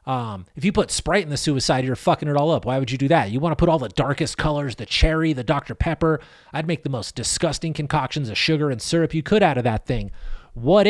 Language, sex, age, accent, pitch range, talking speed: English, male, 30-49, American, 140-180 Hz, 265 wpm